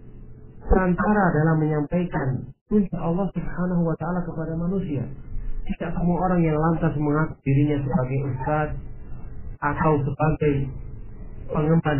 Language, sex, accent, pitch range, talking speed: Indonesian, male, native, 130-165 Hz, 110 wpm